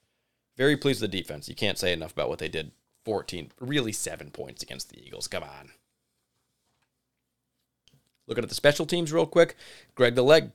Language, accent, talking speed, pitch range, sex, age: English, American, 180 wpm, 100-125 Hz, male, 20-39